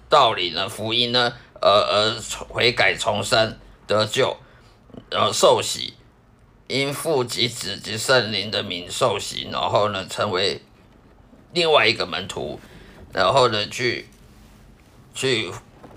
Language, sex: Chinese, male